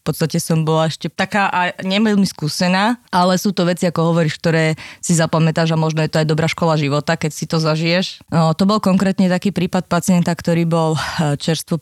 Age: 20-39